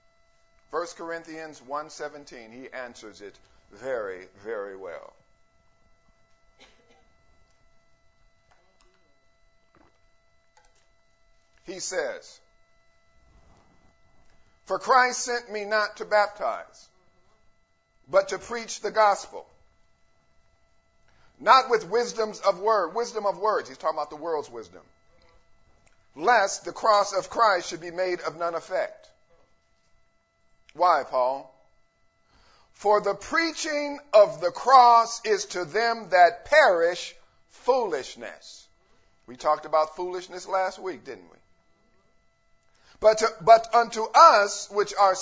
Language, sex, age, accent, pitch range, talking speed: English, male, 50-69, American, 160-240 Hz, 100 wpm